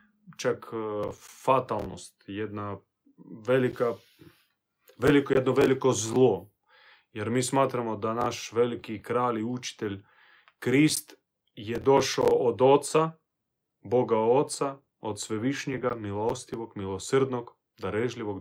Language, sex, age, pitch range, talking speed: Croatian, male, 30-49, 110-135 Hz, 95 wpm